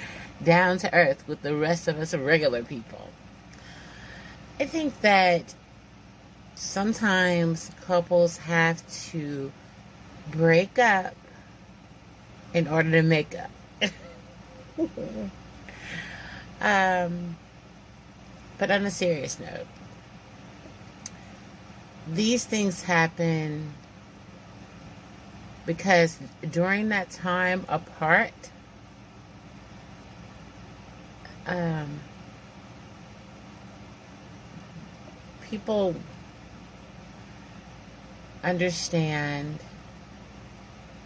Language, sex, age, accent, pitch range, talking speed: English, female, 30-49, American, 145-180 Hz, 60 wpm